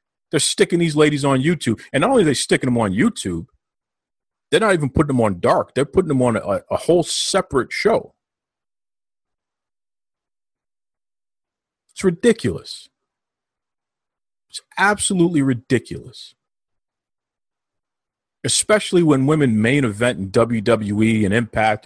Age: 40-59